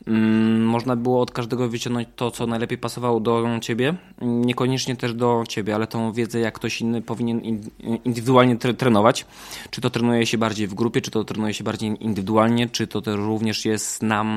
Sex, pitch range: male, 110-125 Hz